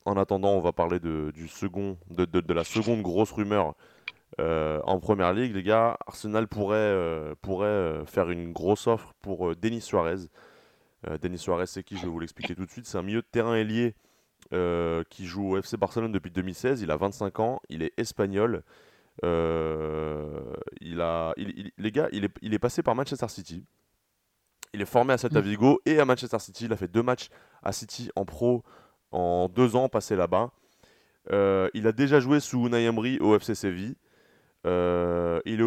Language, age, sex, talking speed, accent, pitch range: French, 20-39, male, 195 wpm, French, 90-115 Hz